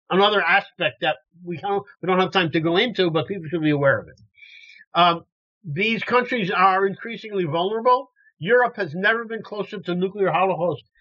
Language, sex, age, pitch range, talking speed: English, male, 50-69, 165-210 Hz, 170 wpm